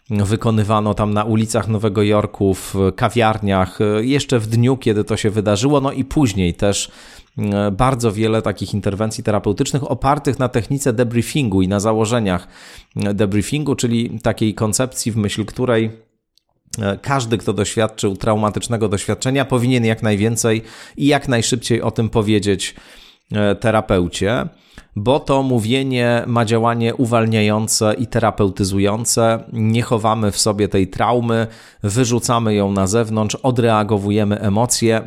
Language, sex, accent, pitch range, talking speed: Polish, male, native, 105-120 Hz, 125 wpm